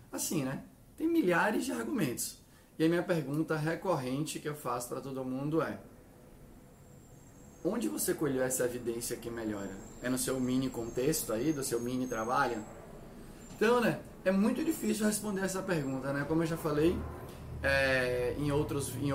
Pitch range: 135-175 Hz